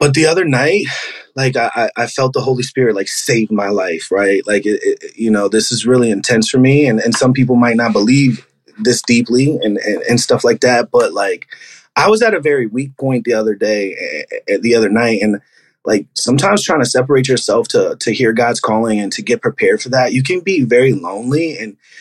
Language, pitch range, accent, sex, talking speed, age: English, 115-145 Hz, American, male, 220 wpm, 30-49